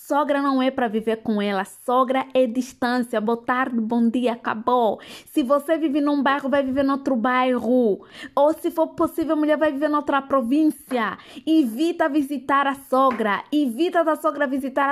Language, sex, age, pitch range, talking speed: Portuguese, female, 20-39, 225-290 Hz, 175 wpm